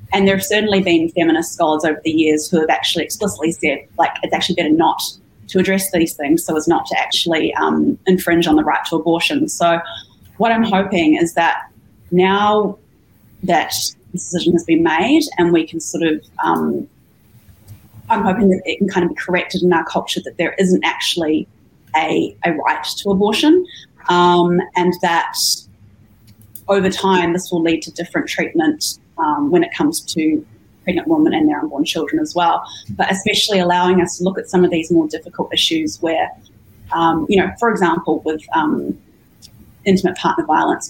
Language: English